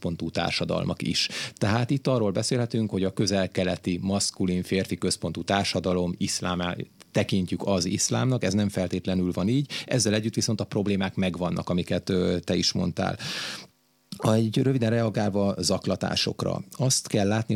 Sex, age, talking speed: male, 30-49, 135 wpm